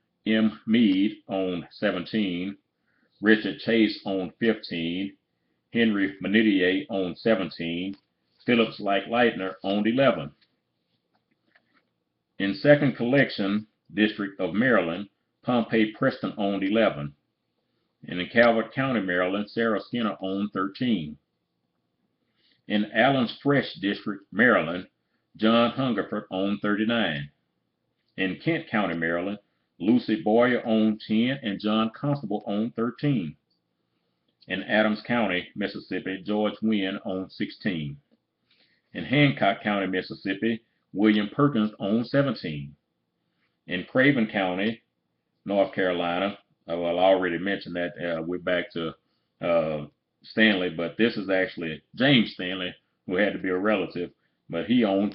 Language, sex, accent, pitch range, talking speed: English, male, American, 90-110 Hz, 115 wpm